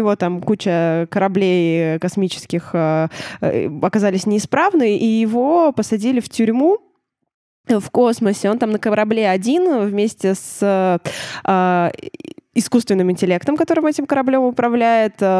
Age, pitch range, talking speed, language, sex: 20-39, 190-240 Hz, 115 wpm, Russian, female